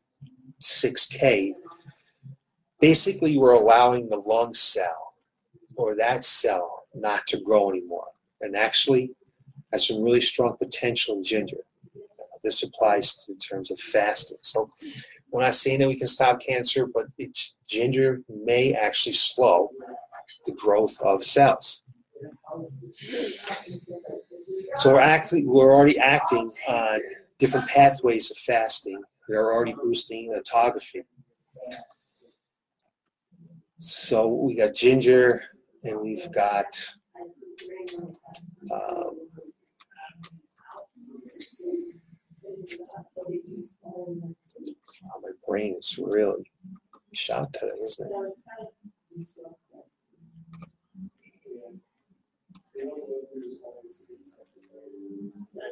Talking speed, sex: 90 wpm, male